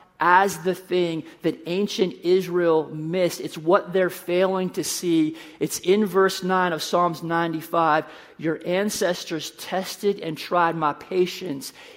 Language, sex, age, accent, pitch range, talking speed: English, male, 40-59, American, 165-190 Hz, 135 wpm